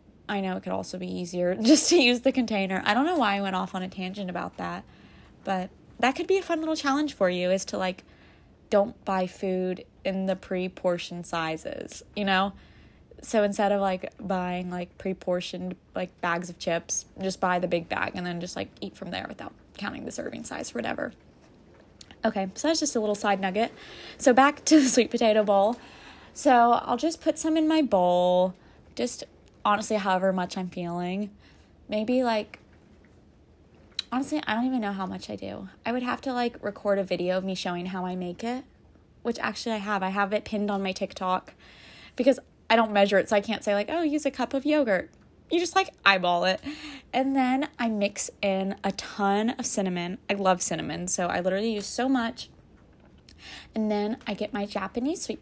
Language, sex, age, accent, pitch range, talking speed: English, female, 20-39, American, 185-240 Hz, 205 wpm